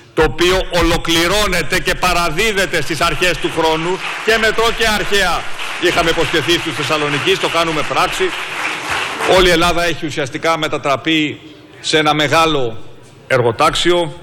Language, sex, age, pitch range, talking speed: Greek, male, 50-69, 130-170 Hz, 125 wpm